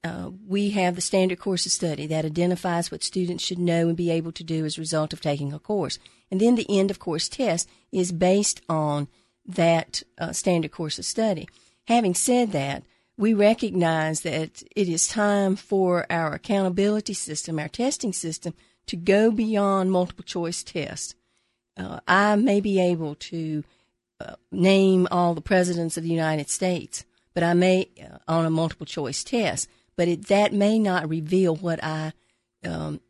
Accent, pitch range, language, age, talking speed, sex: American, 155-190 Hz, English, 50-69, 170 wpm, female